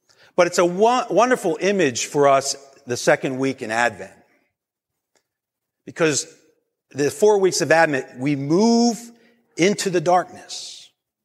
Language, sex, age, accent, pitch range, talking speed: English, male, 50-69, American, 115-165 Hz, 125 wpm